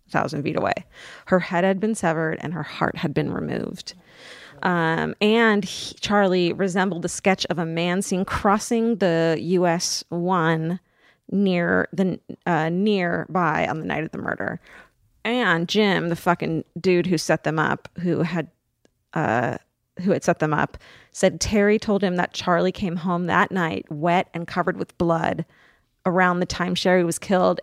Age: 30-49